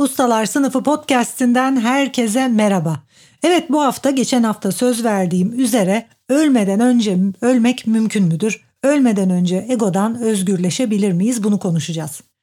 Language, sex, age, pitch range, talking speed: Turkish, female, 60-79, 190-245 Hz, 120 wpm